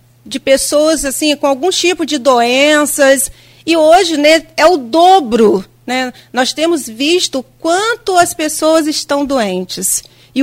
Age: 40-59